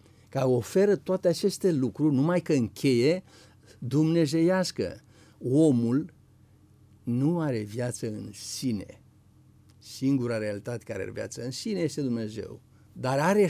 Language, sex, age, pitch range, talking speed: Romanian, male, 60-79, 115-165 Hz, 120 wpm